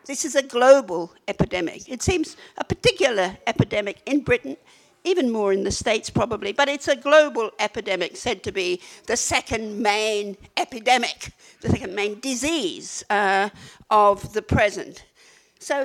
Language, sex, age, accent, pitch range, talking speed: English, female, 60-79, British, 215-320 Hz, 150 wpm